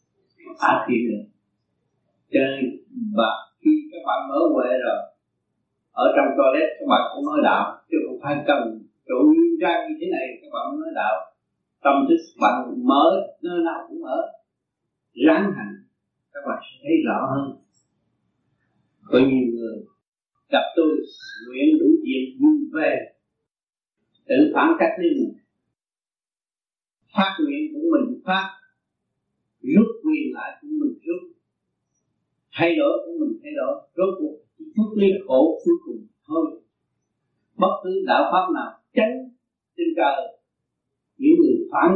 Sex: male